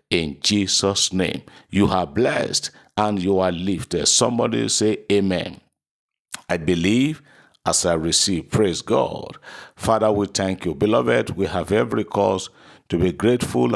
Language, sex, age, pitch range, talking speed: English, male, 50-69, 90-105 Hz, 140 wpm